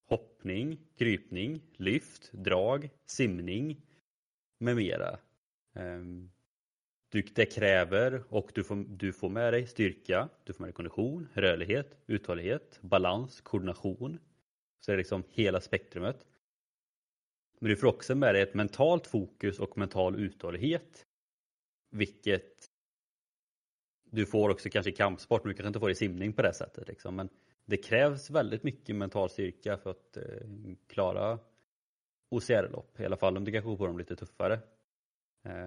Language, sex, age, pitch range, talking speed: Swedish, male, 30-49, 95-120 Hz, 135 wpm